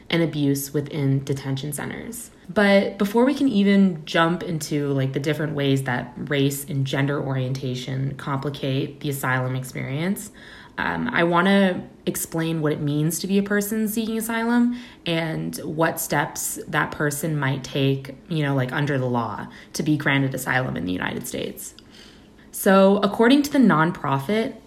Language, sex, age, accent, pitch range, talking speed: English, female, 20-39, American, 145-185 Hz, 155 wpm